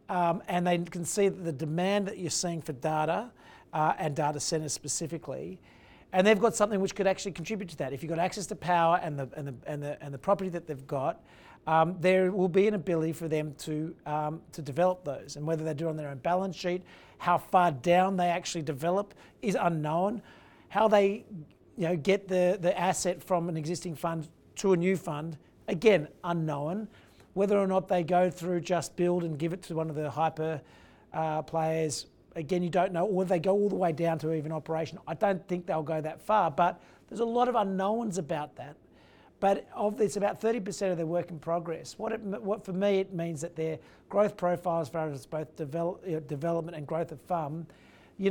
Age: 40-59